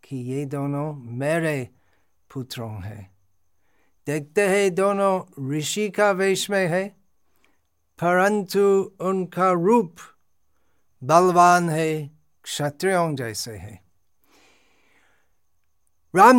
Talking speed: 80 wpm